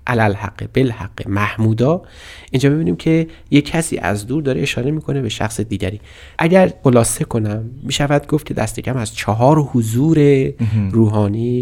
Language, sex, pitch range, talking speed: Persian, male, 105-140 Hz, 140 wpm